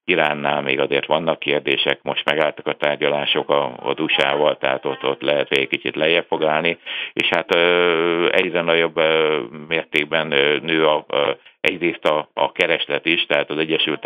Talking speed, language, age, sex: 165 wpm, Hungarian, 60-79, male